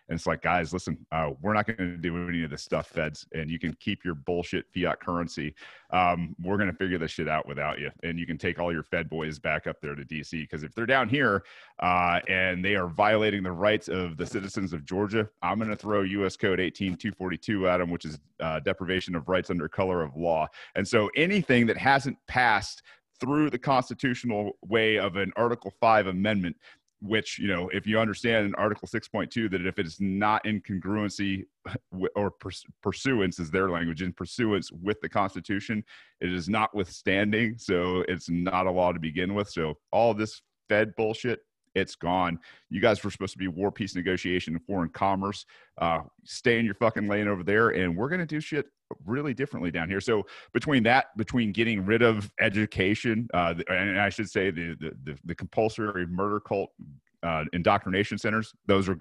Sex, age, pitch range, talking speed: male, 30-49, 90-110 Hz, 200 wpm